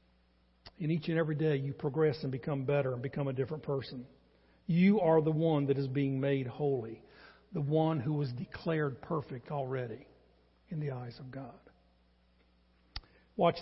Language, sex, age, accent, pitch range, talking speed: English, male, 50-69, American, 135-200 Hz, 165 wpm